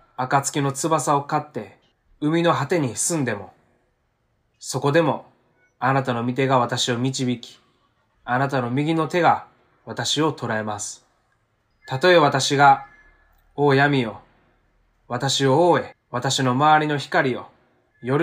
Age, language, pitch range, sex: 20-39, Japanese, 115-140 Hz, male